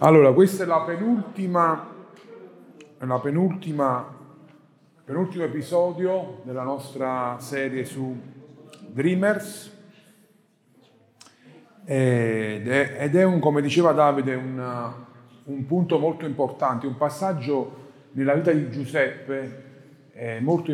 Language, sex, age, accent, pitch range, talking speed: Italian, male, 40-59, native, 130-175 Hz, 105 wpm